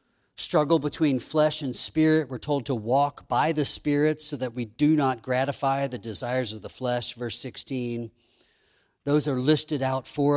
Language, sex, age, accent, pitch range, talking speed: English, male, 40-59, American, 130-160 Hz, 175 wpm